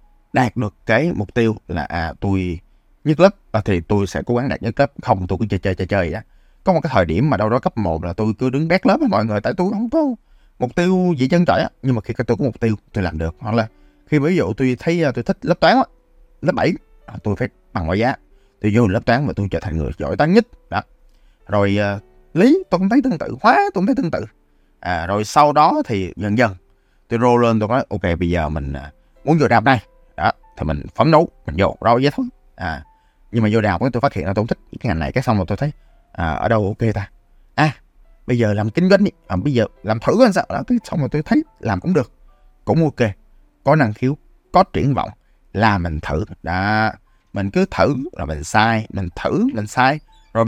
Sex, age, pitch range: male, 20-39, 95-130 Hz